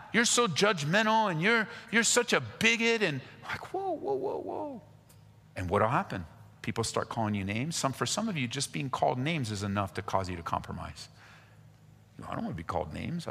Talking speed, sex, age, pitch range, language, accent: 220 wpm, male, 40-59, 105-145 Hz, English, American